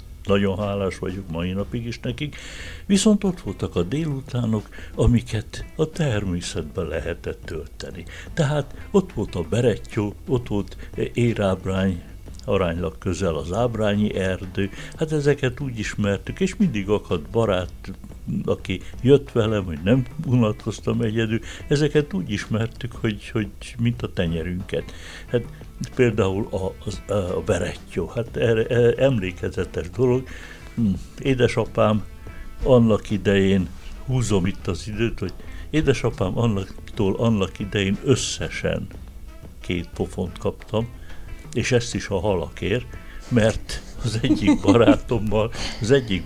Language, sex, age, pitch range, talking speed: Hungarian, male, 60-79, 95-125 Hz, 115 wpm